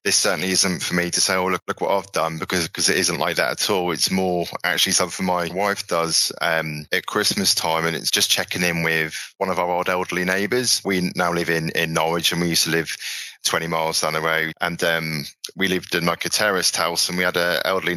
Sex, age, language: male, 20-39, English